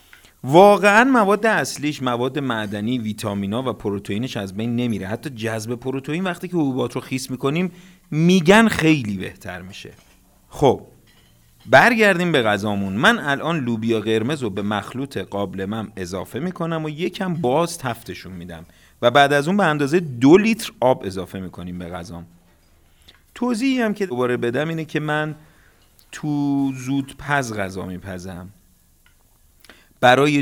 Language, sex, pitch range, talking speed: Persian, male, 100-150 Hz, 140 wpm